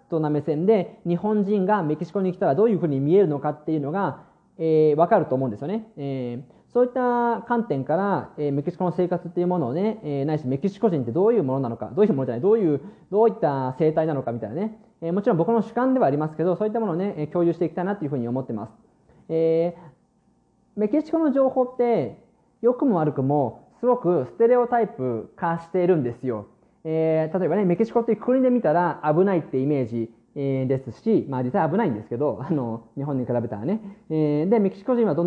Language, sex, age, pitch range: Japanese, male, 20-39, 140-215 Hz